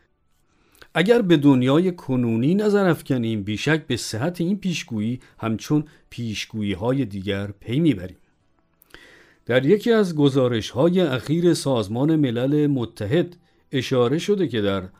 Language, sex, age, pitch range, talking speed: Persian, male, 50-69, 110-150 Hz, 110 wpm